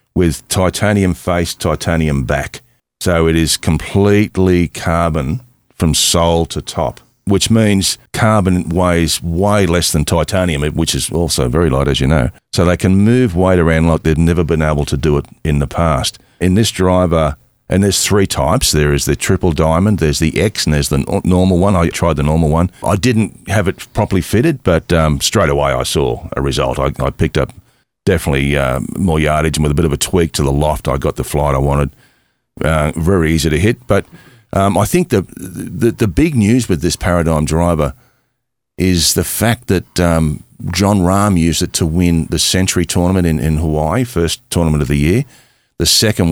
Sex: male